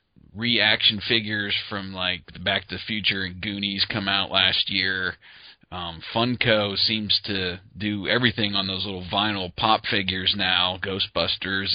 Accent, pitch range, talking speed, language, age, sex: American, 90-105 Hz, 150 wpm, English, 30-49, male